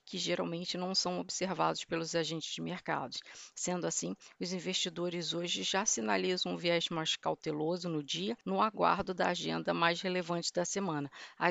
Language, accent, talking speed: Portuguese, Brazilian, 160 wpm